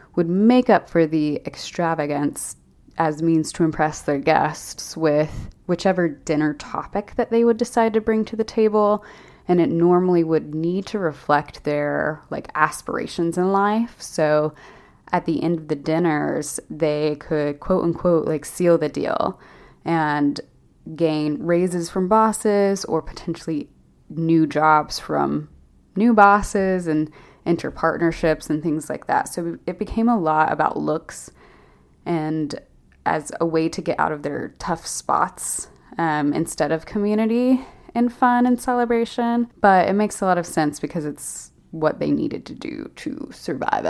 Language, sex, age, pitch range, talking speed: English, female, 20-39, 155-195 Hz, 155 wpm